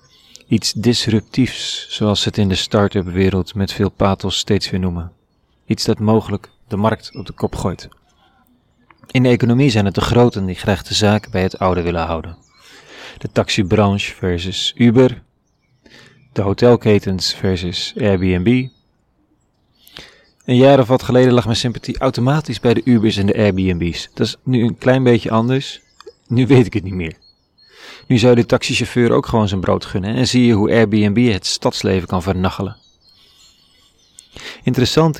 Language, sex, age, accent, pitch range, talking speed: Dutch, male, 30-49, Dutch, 95-125 Hz, 160 wpm